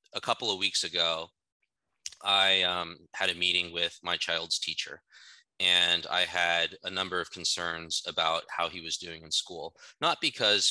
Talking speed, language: 170 wpm, English